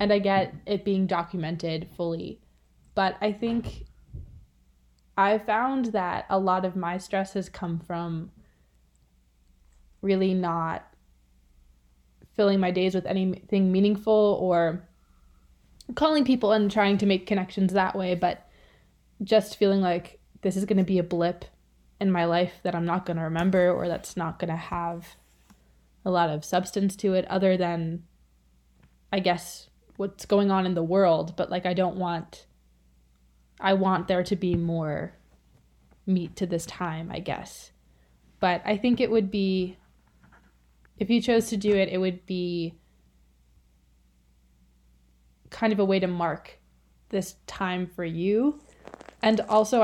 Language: English